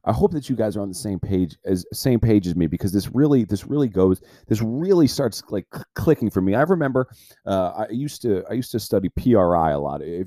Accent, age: American, 30-49